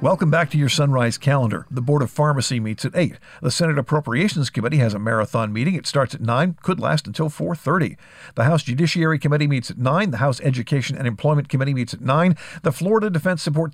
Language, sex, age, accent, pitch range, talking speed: English, male, 50-69, American, 120-165 Hz, 215 wpm